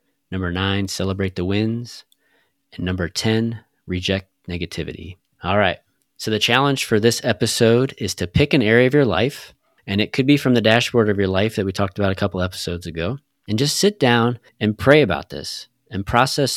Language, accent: English, American